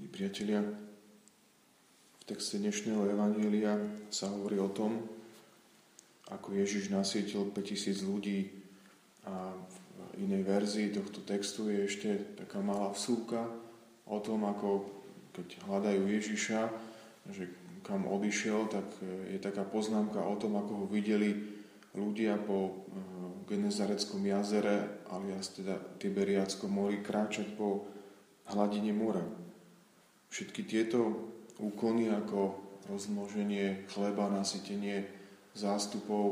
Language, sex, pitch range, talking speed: Slovak, male, 100-110 Hz, 105 wpm